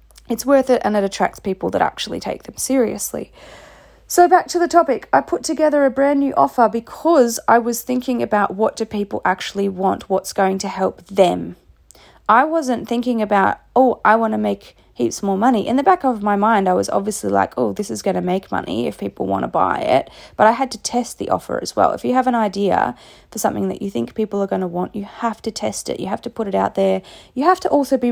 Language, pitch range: English, 195-245 Hz